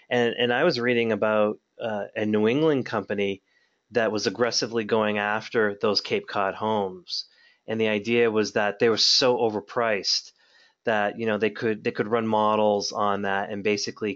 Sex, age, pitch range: male, 30-49, 105-115 Hz